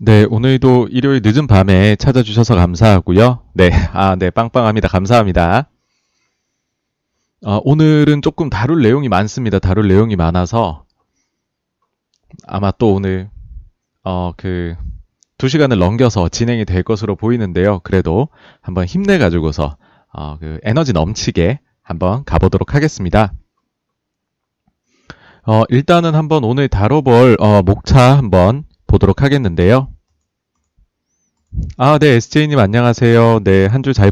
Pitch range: 95-135 Hz